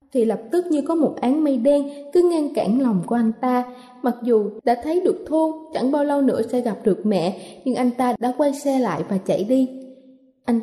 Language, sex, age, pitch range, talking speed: Vietnamese, female, 20-39, 225-285 Hz, 230 wpm